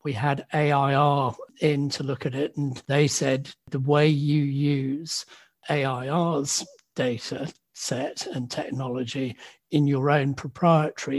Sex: male